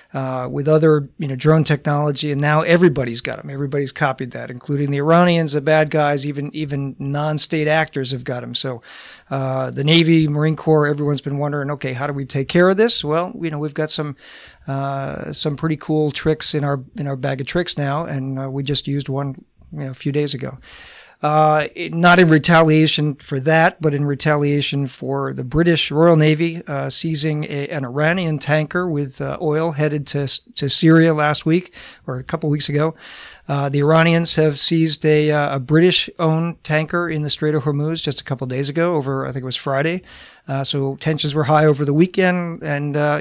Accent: American